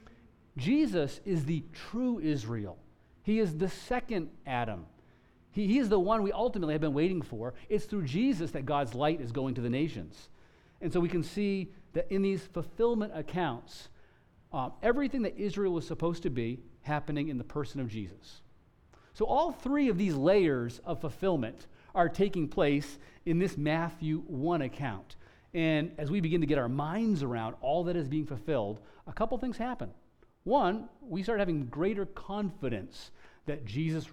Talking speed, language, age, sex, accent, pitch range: 170 wpm, English, 40-59, male, American, 135-190 Hz